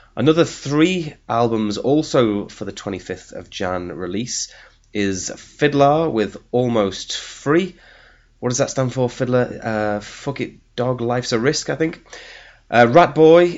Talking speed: 145 wpm